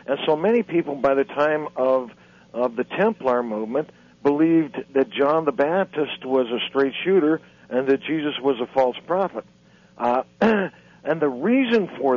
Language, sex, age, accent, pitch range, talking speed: English, male, 60-79, American, 130-165 Hz, 165 wpm